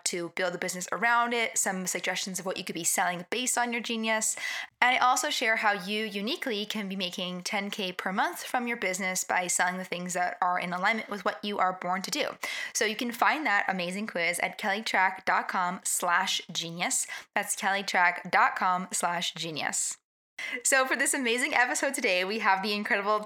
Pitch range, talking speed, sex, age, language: 180-235 Hz, 185 wpm, female, 20-39, English